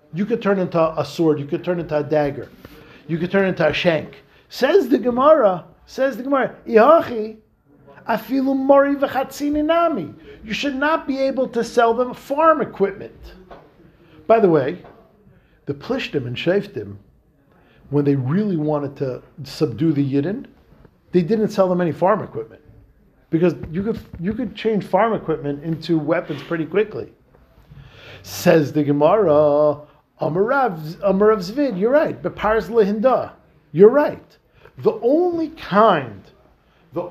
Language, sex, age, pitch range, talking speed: English, male, 50-69, 155-225 Hz, 135 wpm